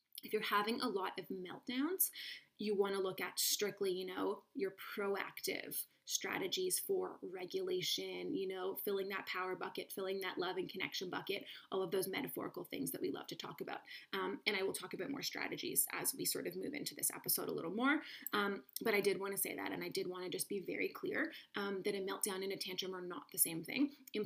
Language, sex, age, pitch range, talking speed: English, female, 20-39, 190-290 Hz, 230 wpm